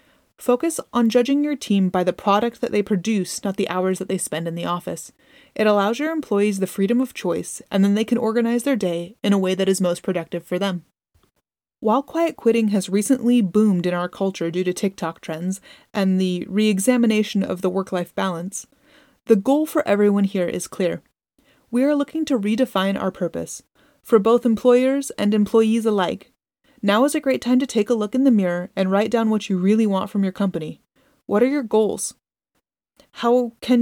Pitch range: 185-240 Hz